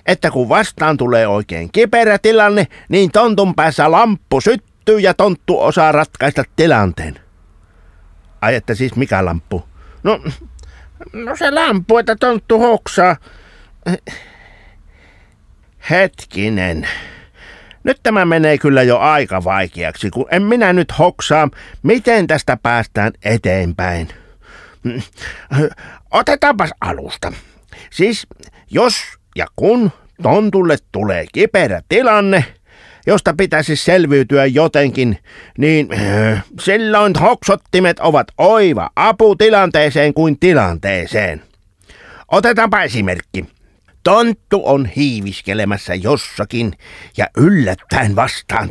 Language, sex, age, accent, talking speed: Finnish, male, 60-79, native, 95 wpm